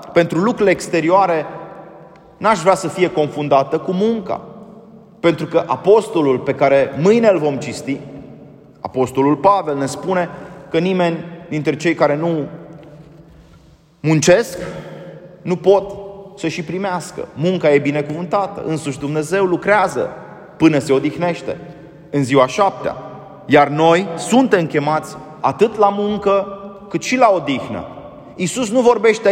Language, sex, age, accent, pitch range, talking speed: Romanian, male, 30-49, native, 150-200 Hz, 125 wpm